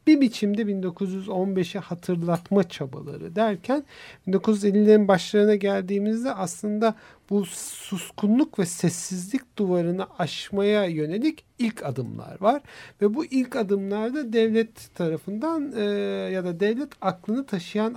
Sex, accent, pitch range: male, native, 160-215 Hz